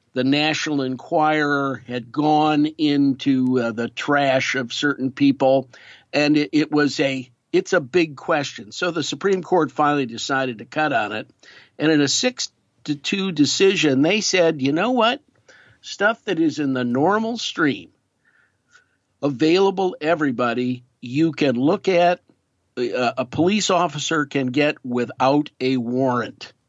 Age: 50-69